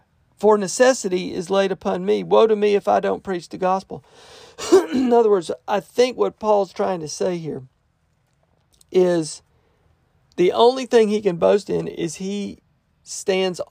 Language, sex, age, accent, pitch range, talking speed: English, male, 40-59, American, 185-235 Hz, 160 wpm